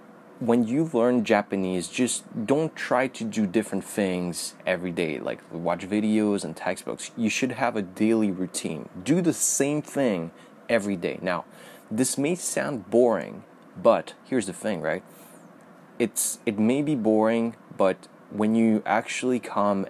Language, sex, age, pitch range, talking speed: English, male, 20-39, 95-115 Hz, 150 wpm